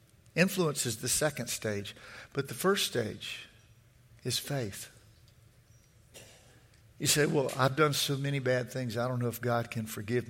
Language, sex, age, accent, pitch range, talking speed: English, male, 50-69, American, 110-135 Hz, 155 wpm